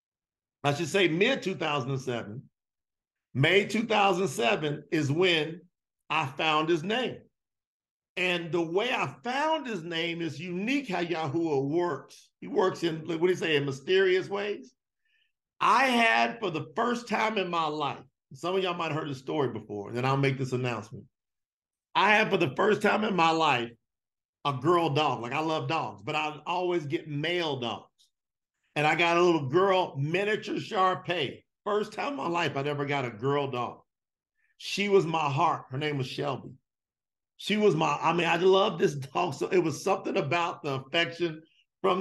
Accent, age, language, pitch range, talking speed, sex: American, 50-69, English, 145-190 Hz, 175 wpm, male